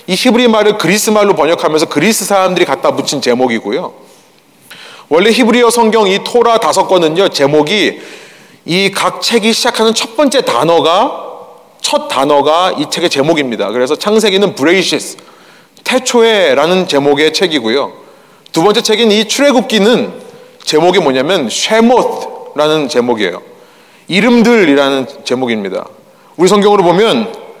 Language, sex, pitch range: Korean, male, 170-260 Hz